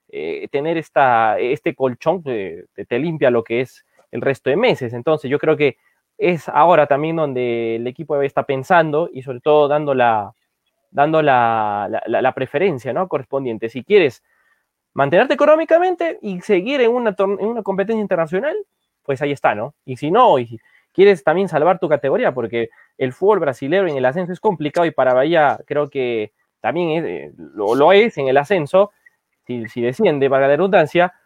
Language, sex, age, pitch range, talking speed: Spanish, male, 20-39, 135-200 Hz, 185 wpm